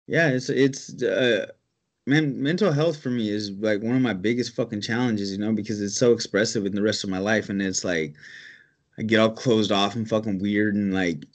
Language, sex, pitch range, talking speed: English, male, 95-110 Hz, 220 wpm